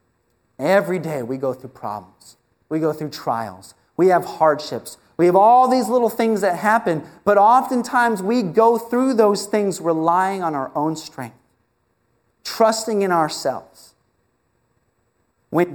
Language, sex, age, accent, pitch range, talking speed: English, male, 30-49, American, 150-245 Hz, 140 wpm